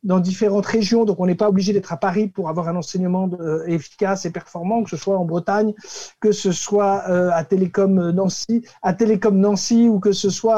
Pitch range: 185-225 Hz